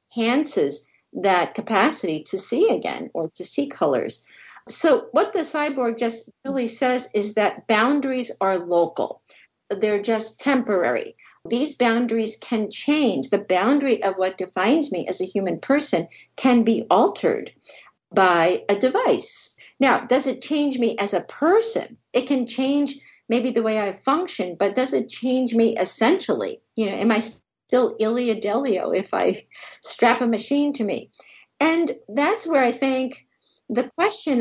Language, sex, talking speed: English, female, 155 wpm